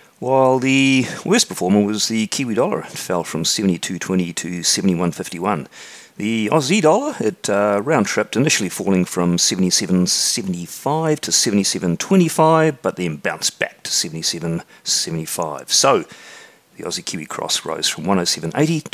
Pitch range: 85-105 Hz